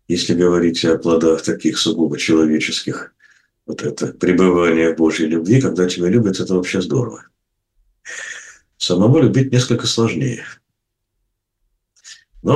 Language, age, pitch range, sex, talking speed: Russian, 60-79, 85-120 Hz, male, 115 wpm